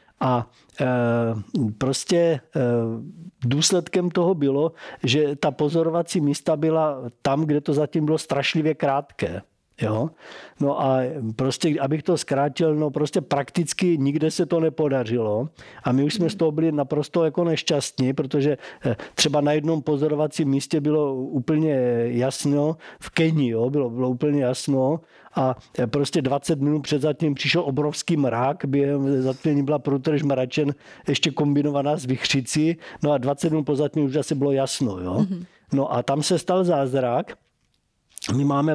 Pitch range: 135-160 Hz